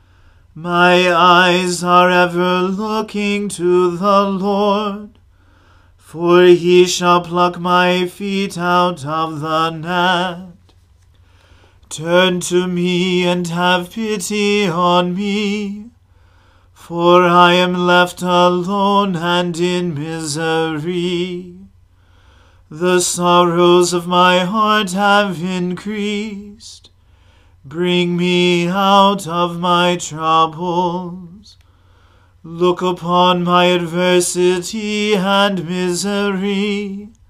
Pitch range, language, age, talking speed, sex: 160-180 Hz, English, 40-59, 85 wpm, male